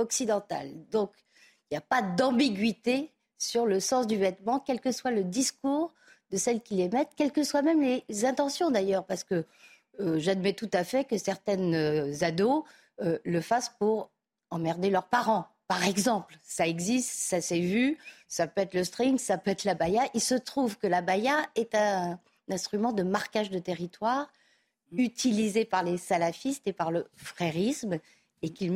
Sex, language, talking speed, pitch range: female, French, 180 wpm, 185-245 Hz